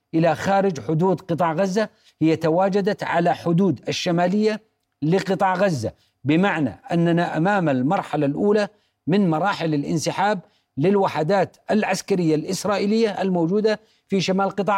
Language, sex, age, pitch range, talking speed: Arabic, male, 50-69, 160-200 Hz, 110 wpm